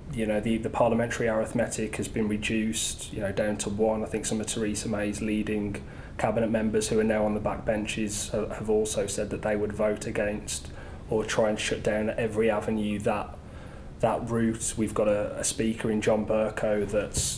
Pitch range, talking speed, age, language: 105-115 Hz, 195 wpm, 20-39, English